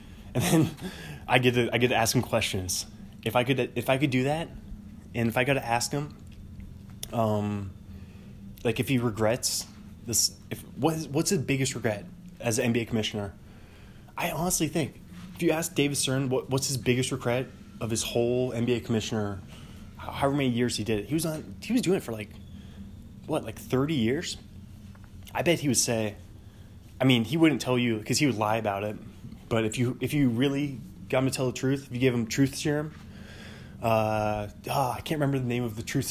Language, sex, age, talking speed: English, male, 20-39, 210 wpm